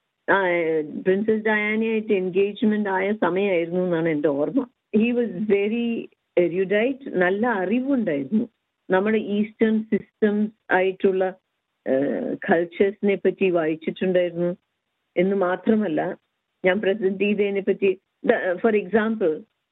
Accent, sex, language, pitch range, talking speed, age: native, female, Malayalam, 180-215 Hz, 85 wpm, 50-69